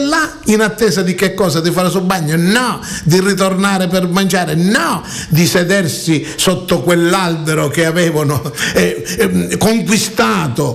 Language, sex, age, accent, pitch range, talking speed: Italian, male, 50-69, native, 160-215 Hz, 140 wpm